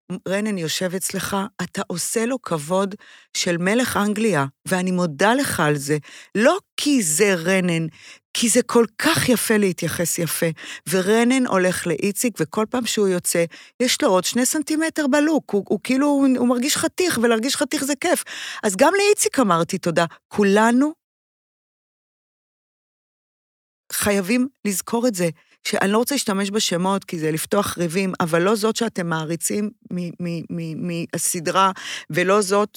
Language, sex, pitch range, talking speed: Hebrew, female, 175-230 Hz, 140 wpm